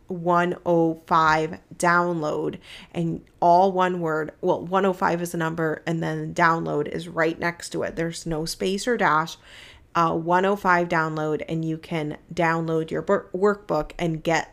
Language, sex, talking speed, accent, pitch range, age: English, female, 145 wpm, American, 165-190 Hz, 30-49